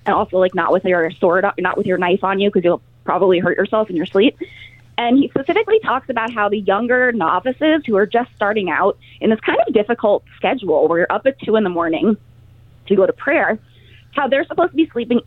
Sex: female